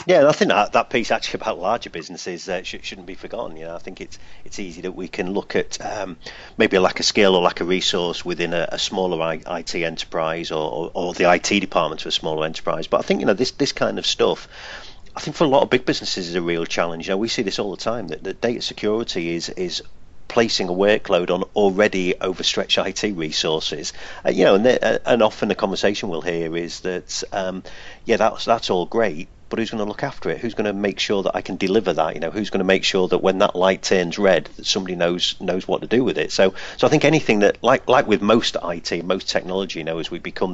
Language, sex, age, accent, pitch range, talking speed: English, male, 40-59, British, 85-115 Hz, 255 wpm